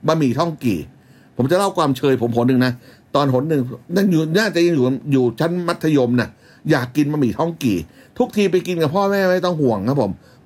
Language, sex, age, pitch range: Thai, male, 60-79, 125-160 Hz